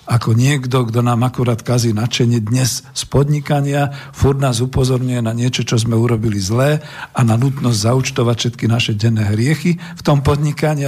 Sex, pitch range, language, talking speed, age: male, 110-130 Hz, Slovak, 165 wpm, 50-69